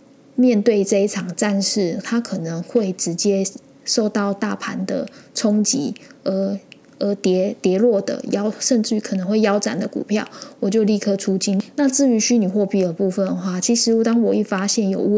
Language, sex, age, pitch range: Chinese, female, 10-29, 195-245 Hz